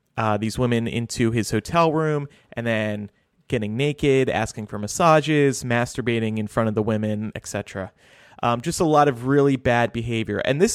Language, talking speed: English, 175 wpm